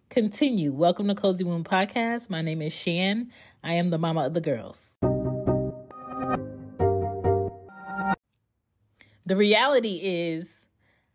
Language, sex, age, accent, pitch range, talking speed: English, female, 30-49, American, 155-200 Hz, 110 wpm